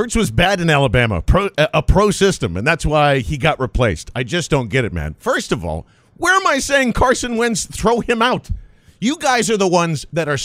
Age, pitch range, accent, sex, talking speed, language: 40-59, 145-205 Hz, American, male, 230 wpm, English